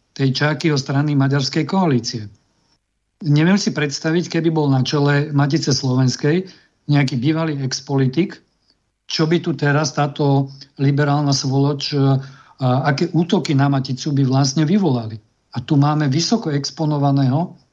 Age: 50-69